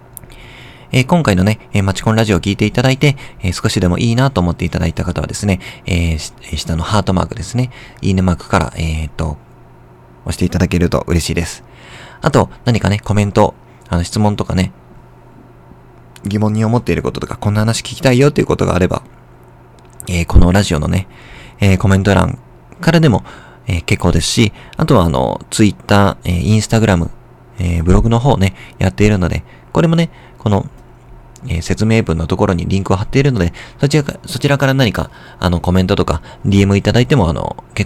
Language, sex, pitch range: Japanese, male, 85-110 Hz